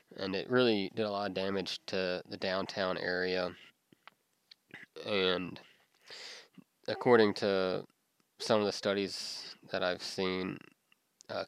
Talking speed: 120 wpm